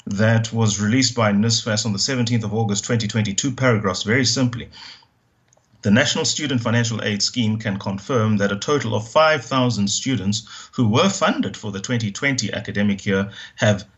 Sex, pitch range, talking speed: male, 100-120 Hz, 160 wpm